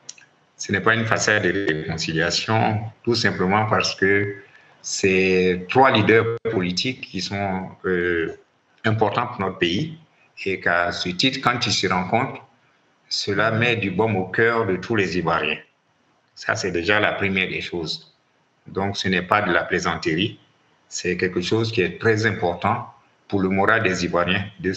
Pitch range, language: 95-115 Hz, French